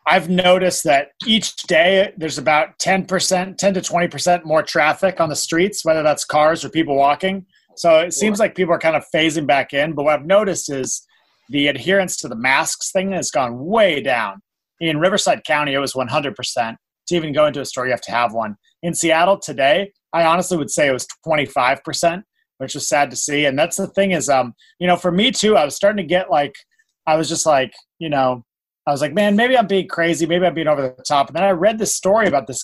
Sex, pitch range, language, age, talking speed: male, 130-180 Hz, English, 30-49, 230 wpm